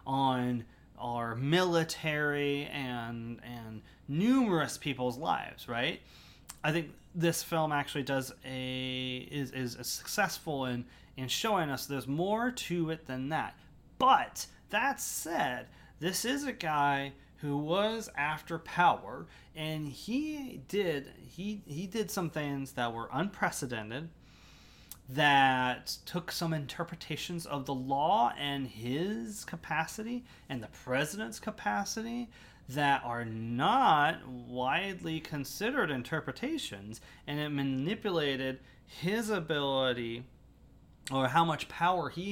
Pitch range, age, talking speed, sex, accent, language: 125-170 Hz, 30-49, 115 wpm, male, American, English